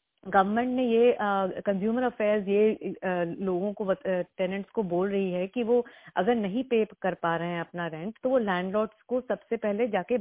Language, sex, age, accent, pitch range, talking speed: Hindi, female, 30-49, native, 185-225 Hz, 190 wpm